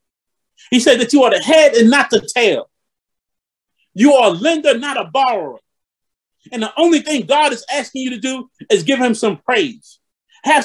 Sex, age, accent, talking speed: male, 30-49, American, 190 wpm